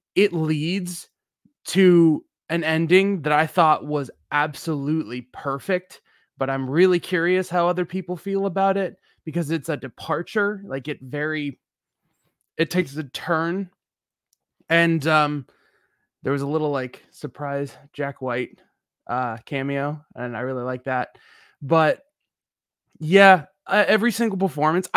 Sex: male